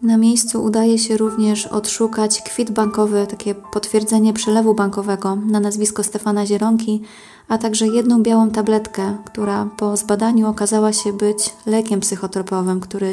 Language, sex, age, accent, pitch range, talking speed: Polish, female, 20-39, native, 200-220 Hz, 135 wpm